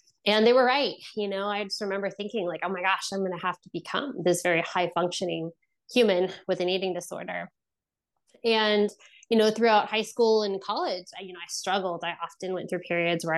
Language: English